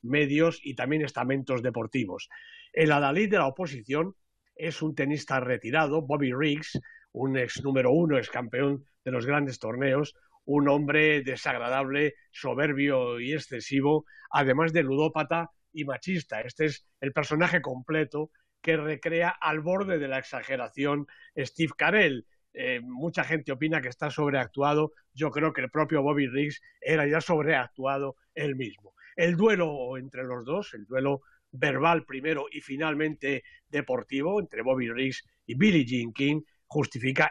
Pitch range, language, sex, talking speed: 135-160 Hz, Spanish, male, 145 wpm